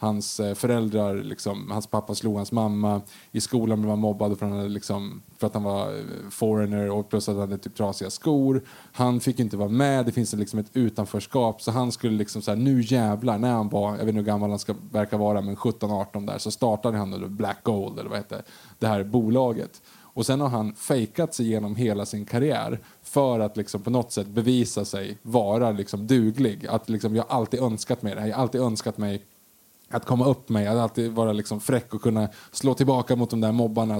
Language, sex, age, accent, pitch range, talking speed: Swedish, male, 20-39, Norwegian, 105-125 Hz, 215 wpm